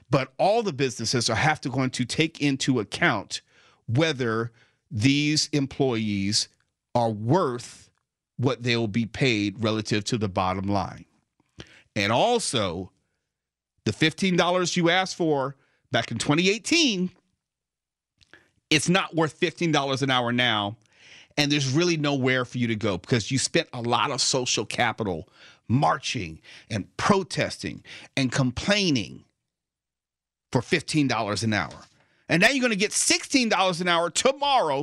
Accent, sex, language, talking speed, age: American, male, English, 135 wpm, 40-59